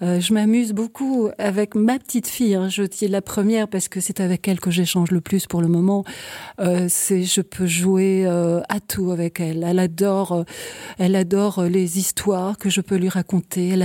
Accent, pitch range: French, 185-230 Hz